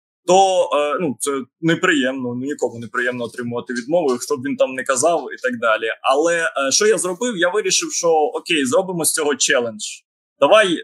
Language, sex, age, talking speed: Ukrainian, male, 20-39, 160 wpm